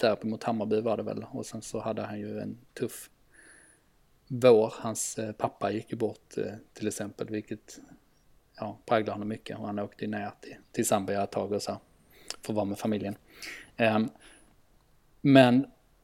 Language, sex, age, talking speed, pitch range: Swedish, male, 20-39, 165 wpm, 105-130 Hz